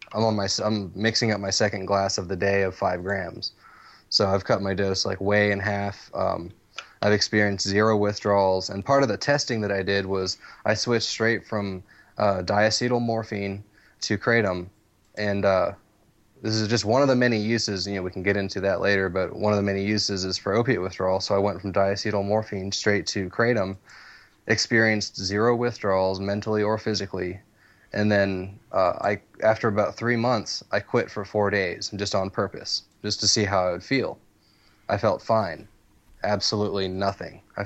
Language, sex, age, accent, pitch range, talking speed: English, male, 20-39, American, 100-110 Hz, 190 wpm